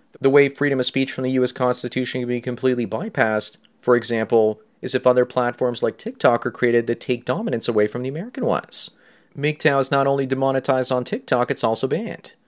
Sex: male